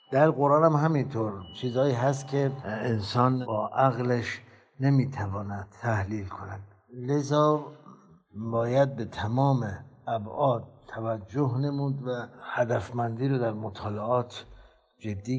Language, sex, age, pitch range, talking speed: Persian, male, 60-79, 100-125 Hz, 100 wpm